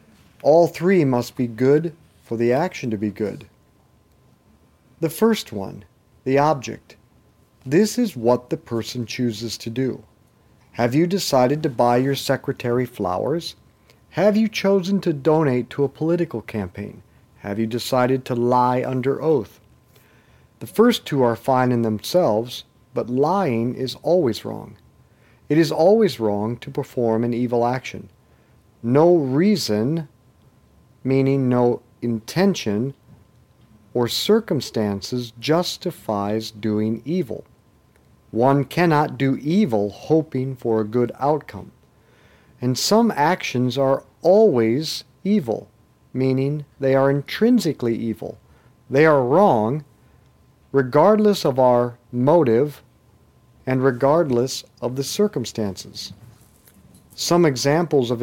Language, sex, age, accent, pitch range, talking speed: English, male, 50-69, American, 115-160 Hz, 115 wpm